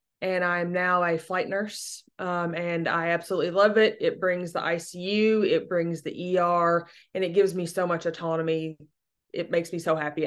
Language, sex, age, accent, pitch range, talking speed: English, female, 20-39, American, 175-205 Hz, 185 wpm